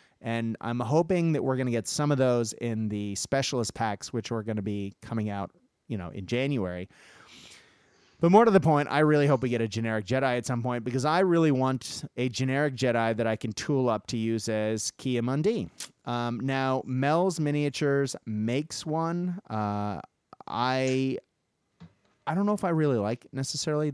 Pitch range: 105-135 Hz